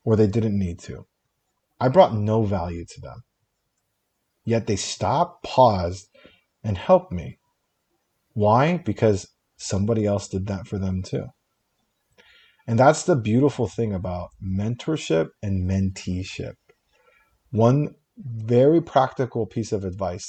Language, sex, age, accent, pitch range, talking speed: English, male, 40-59, American, 100-135 Hz, 125 wpm